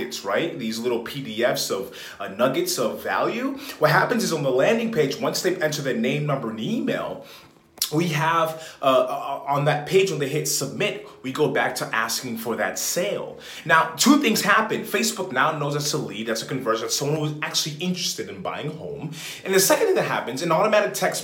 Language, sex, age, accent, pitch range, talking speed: English, male, 30-49, American, 140-190 Hz, 205 wpm